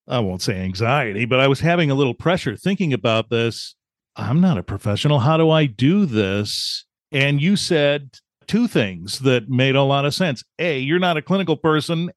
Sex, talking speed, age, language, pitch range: male, 195 wpm, 40-59, English, 115-150 Hz